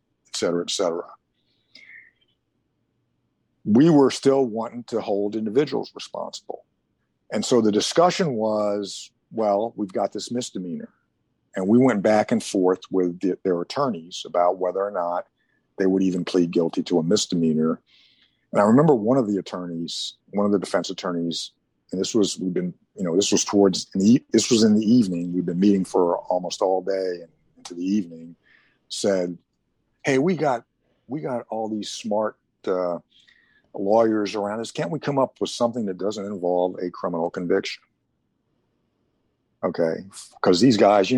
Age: 50-69